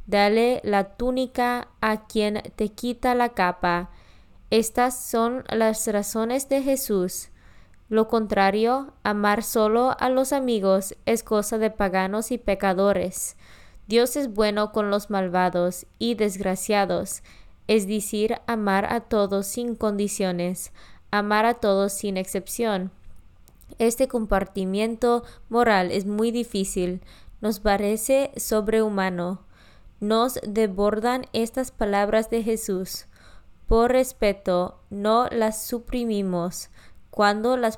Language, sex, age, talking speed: Spanish, female, 20-39, 110 wpm